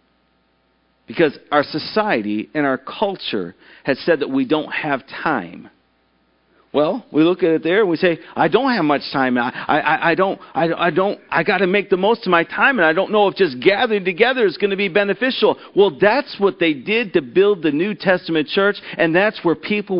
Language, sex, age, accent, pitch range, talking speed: English, male, 40-59, American, 160-240 Hz, 215 wpm